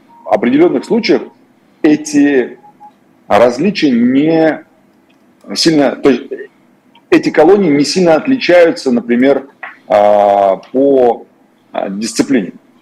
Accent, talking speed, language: native, 80 wpm, Russian